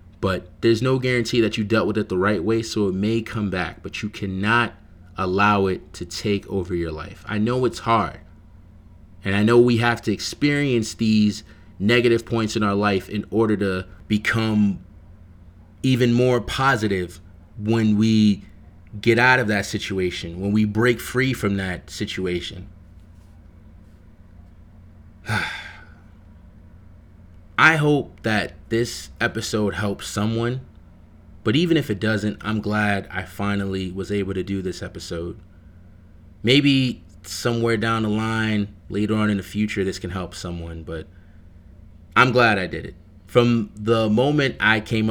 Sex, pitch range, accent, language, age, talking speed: male, 90-110 Hz, American, English, 30-49, 150 wpm